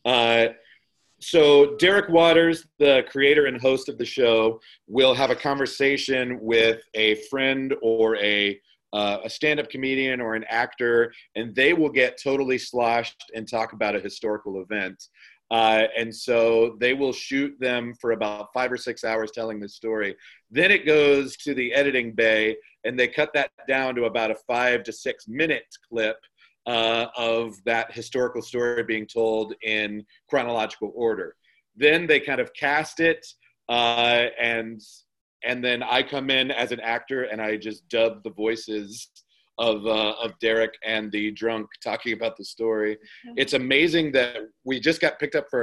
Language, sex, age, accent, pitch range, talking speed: English, male, 40-59, American, 110-135 Hz, 165 wpm